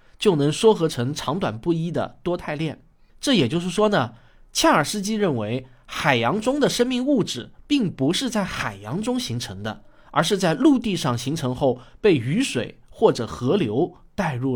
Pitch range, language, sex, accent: 125-200 Hz, Chinese, male, native